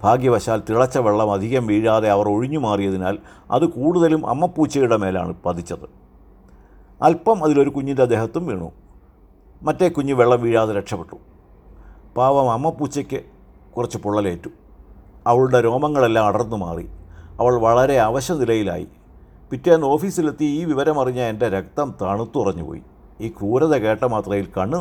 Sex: male